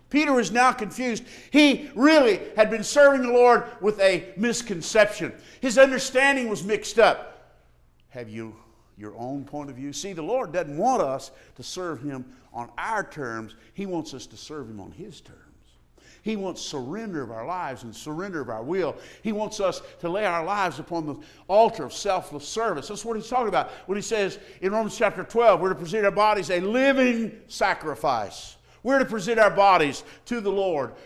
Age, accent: 50-69, American